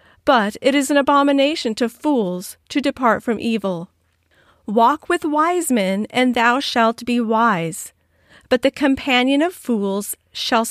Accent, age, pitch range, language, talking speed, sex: American, 40-59, 205-270 Hz, English, 145 wpm, female